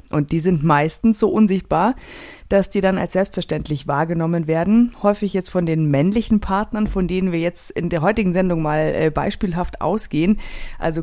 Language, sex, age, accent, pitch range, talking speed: German, female, 30-49, German, 165-225 Hz, 170 wpm